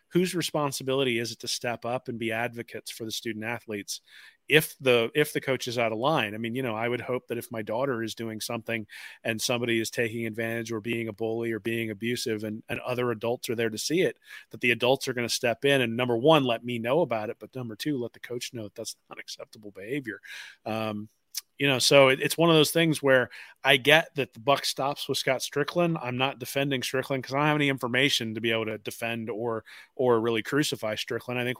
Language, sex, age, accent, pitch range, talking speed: English, male, 30-49, American, 115-135 Hz, 240 wpm